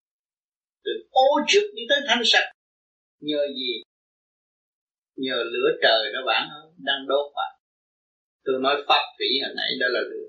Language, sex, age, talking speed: Vietnamese, male, 30-49, 155 wpm